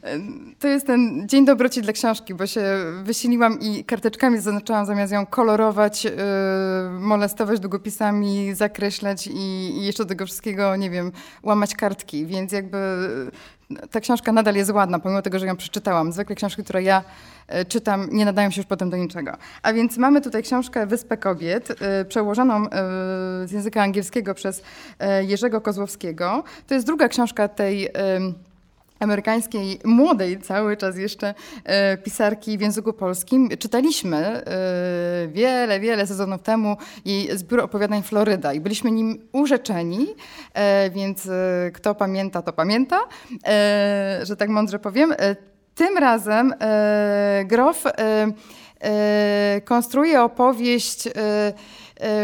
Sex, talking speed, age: female, 130 wpm, 20-39